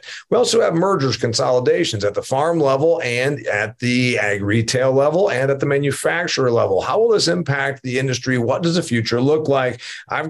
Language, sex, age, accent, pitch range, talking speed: English, male, 40-59, American, 120-150 Hz, 190 wpm